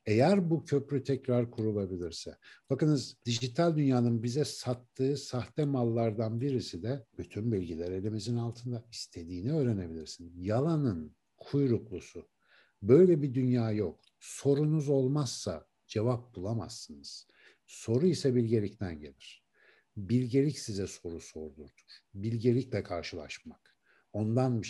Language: Turkish